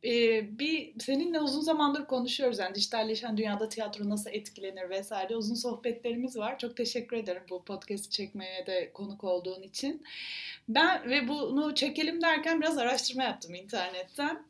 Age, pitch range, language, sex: 30-49, 210-275 Hz, Turkish, female